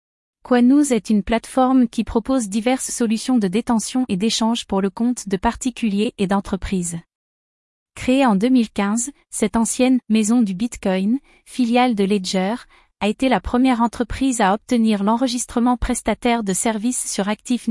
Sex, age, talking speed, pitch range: female, 30-49, 155 wpm, 210-245 Hz